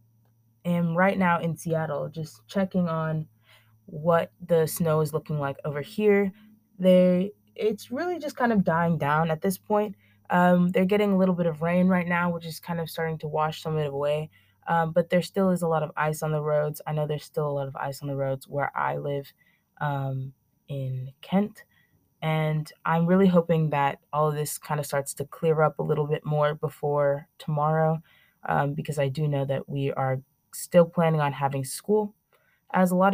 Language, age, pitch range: English, 20-39, 145-175 Hz